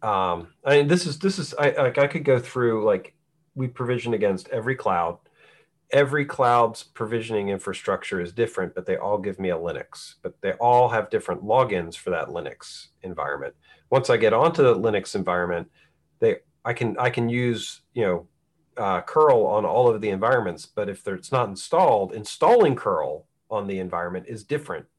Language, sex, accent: English, male, American